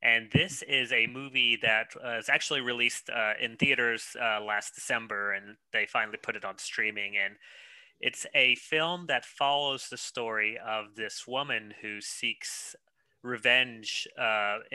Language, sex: English, male